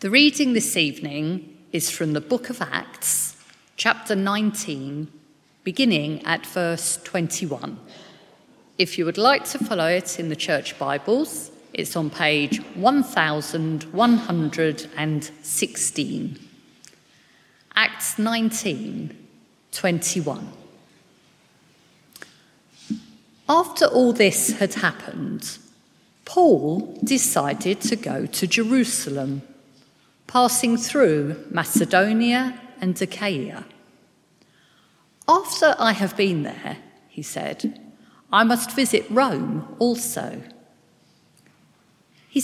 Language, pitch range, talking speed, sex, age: English, 155-245 Hz, 90 wpm, female, 50-69